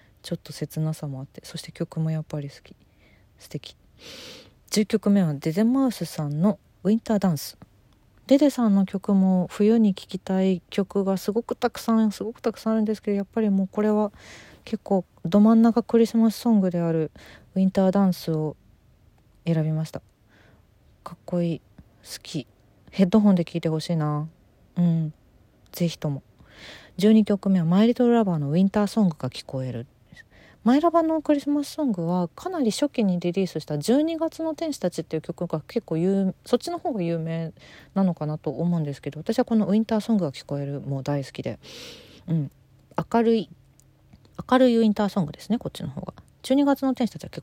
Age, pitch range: 40-59, 155-220 Hz